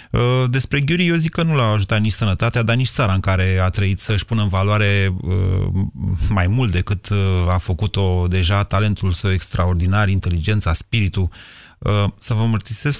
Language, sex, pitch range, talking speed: Romanian, male, 95-115 Hz, 160 wpm